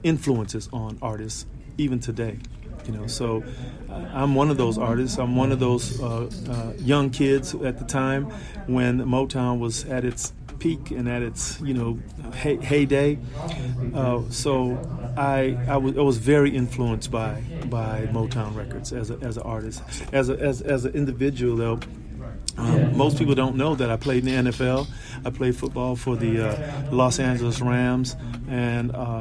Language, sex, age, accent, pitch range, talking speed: English, male, 40-59, American, 115-130 Hz, 170 wpm